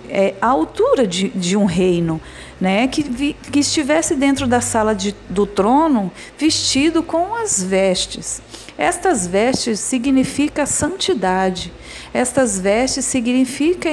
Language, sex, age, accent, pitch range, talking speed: Portuguese, female, 50-69, Brazilian, 195-275 Hz, 130 wpm